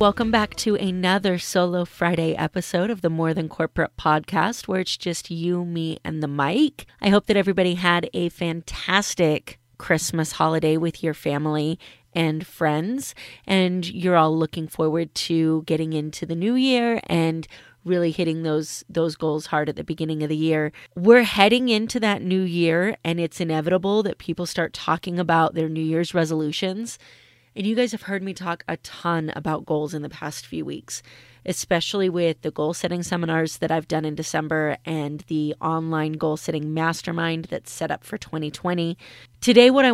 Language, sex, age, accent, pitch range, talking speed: English, female, 30-49, American, 155-185 Hz, 175 wpm